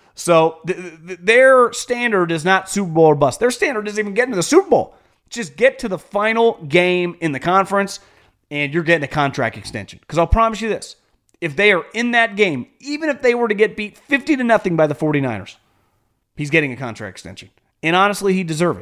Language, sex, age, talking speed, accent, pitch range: English, male, 30-49, 215 wpm, American, 155-225 Hz